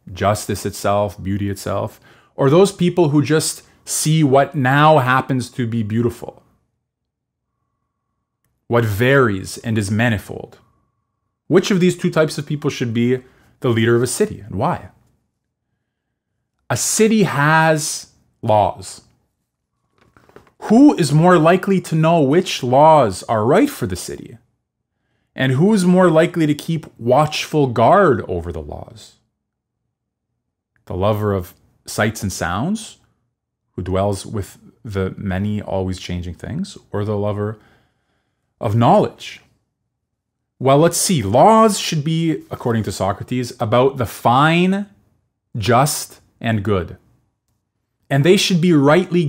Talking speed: 130 wpm